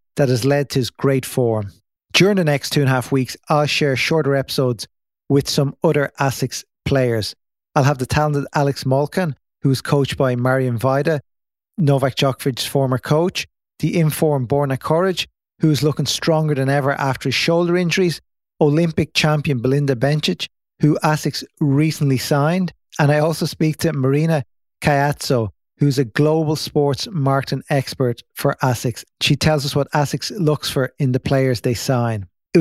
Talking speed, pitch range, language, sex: 165 wpm, 130-155 Hz, English, male